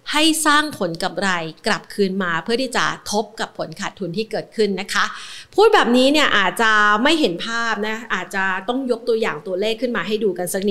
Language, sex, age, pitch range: Thai, female, 30-49, 185-230 Hz